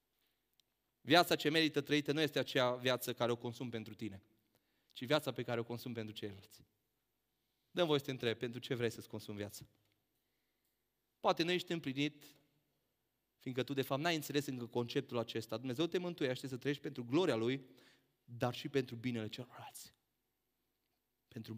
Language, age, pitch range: Romanian, 30-49, 110-135 Hz